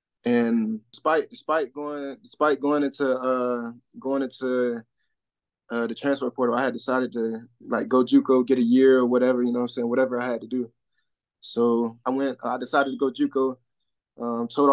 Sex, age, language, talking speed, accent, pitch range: male, 20-39, English, 185 wpm, American, 125-145 Hz